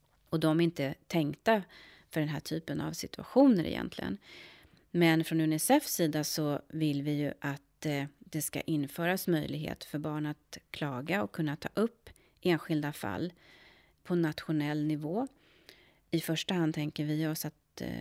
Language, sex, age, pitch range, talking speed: Swedish, female, 30-49, 150-170 Hz, 150 wpm